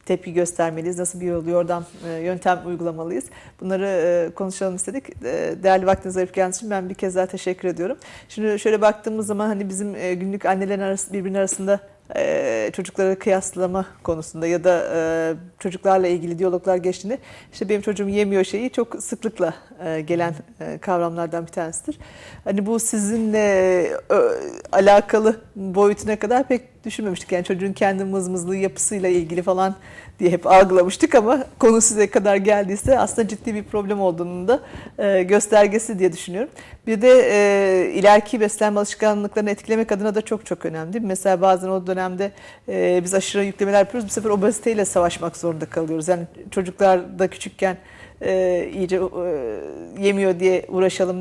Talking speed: 145 wpm